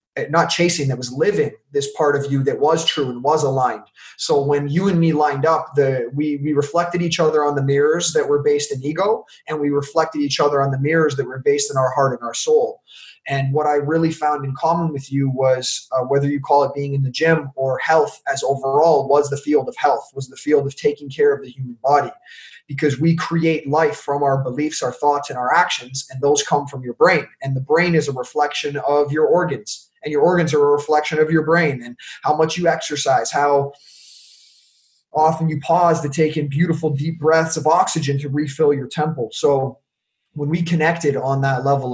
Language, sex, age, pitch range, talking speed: German, male, 20-39, 135-155 Hz, 220 wpm